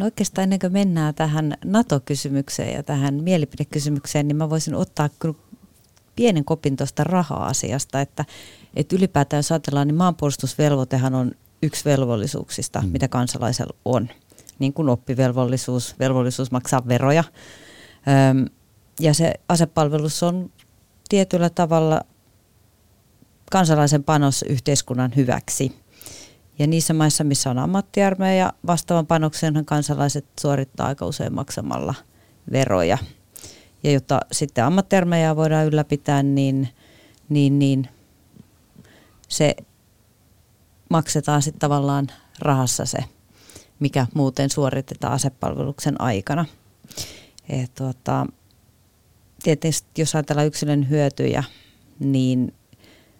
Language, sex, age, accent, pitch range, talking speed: Finnish, female, 30-49, native, 125-155 Hz, 100 wpm